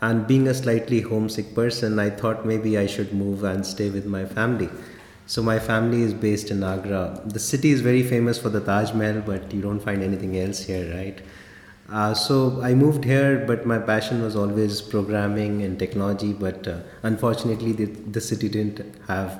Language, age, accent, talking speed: English, 30-49, Indian, 190 wpm